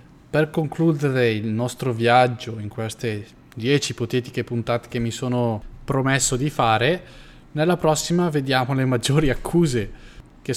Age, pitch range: 20-39, 110-130 Hz